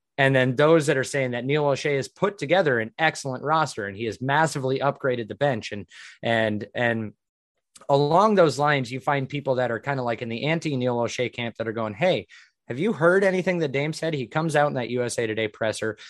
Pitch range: 115-150 Hz